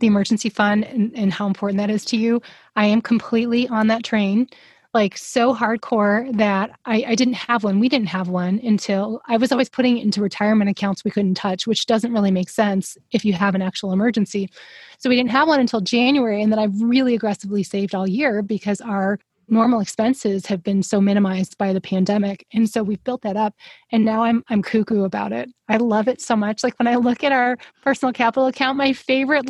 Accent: American